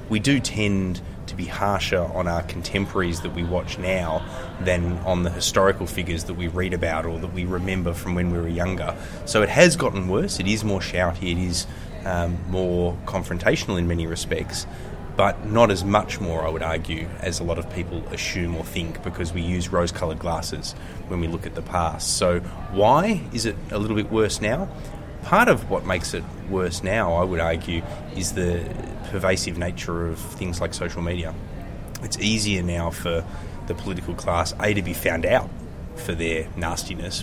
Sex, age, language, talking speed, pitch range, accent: male, 20-39, English, 190 wpm, 85-95 Hz, Australian